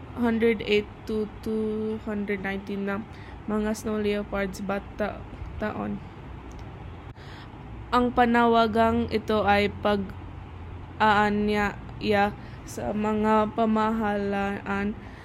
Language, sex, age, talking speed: Filipino, female, 20-39, 65 wpm